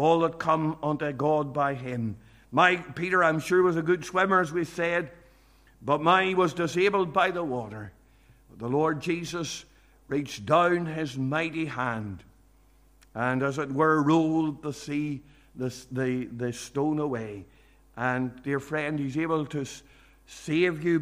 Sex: male